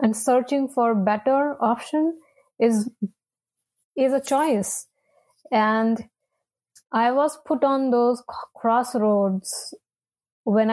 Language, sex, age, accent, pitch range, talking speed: English, female, 20-39, Indian, 225-270 Hz, 105 wpm